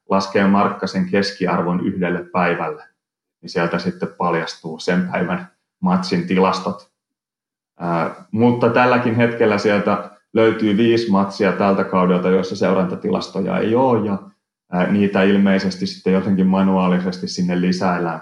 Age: 30-49